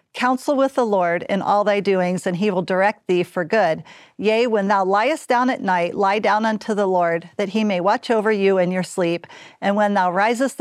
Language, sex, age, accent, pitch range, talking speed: English, female, 50-69, American, 185-220 Hz, 225 wpm